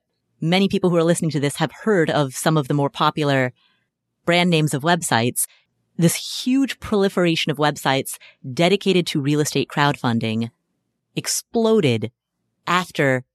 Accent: American